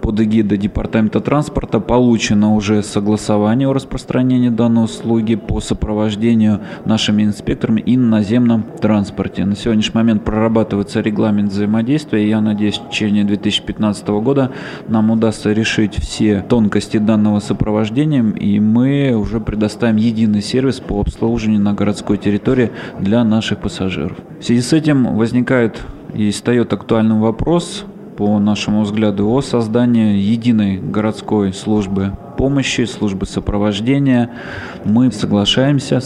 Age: 20-39